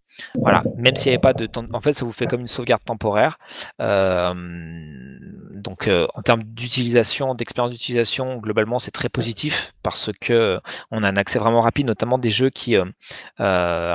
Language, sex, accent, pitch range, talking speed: French, male, French, 95-125 Hz, 180 wpm